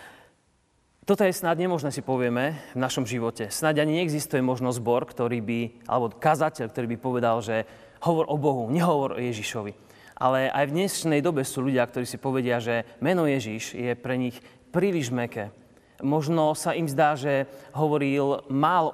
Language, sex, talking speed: Slovak, male, 170 wpm